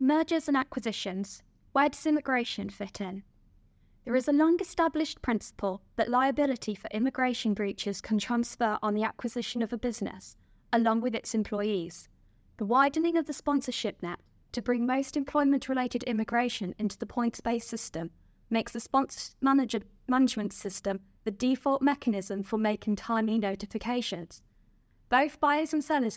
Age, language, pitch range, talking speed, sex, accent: 20-39, English, 195-250 Hz, 140 wpm, female, British